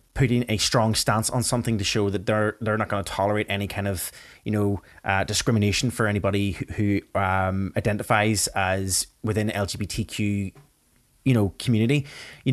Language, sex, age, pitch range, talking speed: English, male, 20-39, 100-120 Hz, 170 wpm